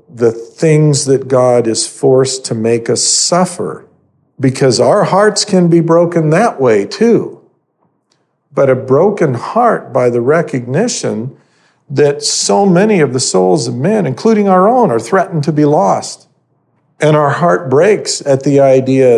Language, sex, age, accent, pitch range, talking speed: English, male, 50-69, American, 125-165 Hz, 155 wpm